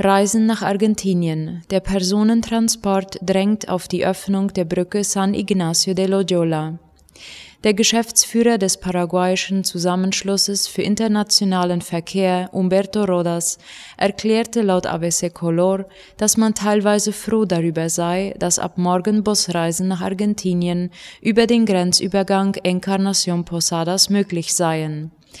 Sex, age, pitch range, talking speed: female, 20-39, 175-200 Hz, 115 wpm